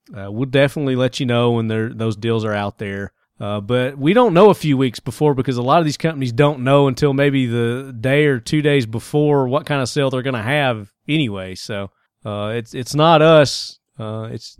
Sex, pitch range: male, 105-135 Hz